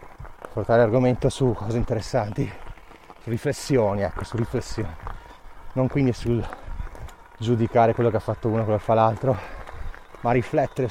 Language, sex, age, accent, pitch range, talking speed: Italian, male, 30-49, native, 100-120 Hz, 140 wpm